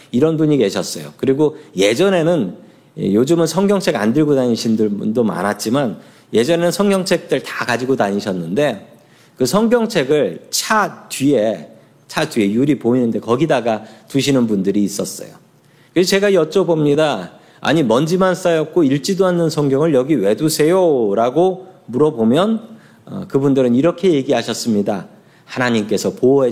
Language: Korean